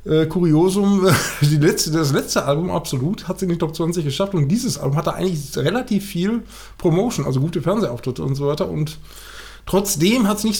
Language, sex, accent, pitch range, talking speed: German, male, German, 150-200 Hz, 180 wpm